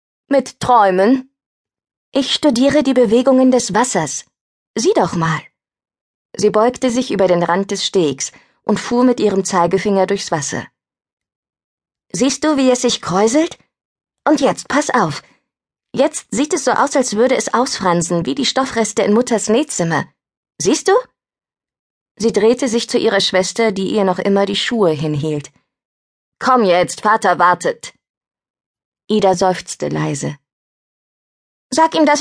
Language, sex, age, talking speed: German, female, 20-39, 140 wpm